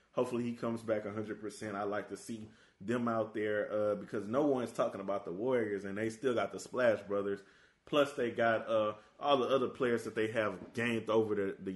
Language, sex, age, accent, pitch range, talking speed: English, male, 20-39, American, 100-125 Hz, 220 wpm